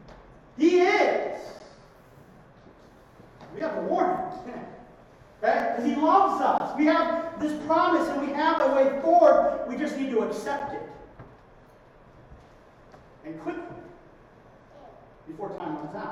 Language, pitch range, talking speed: English, 215-310 Hz, 120 wpm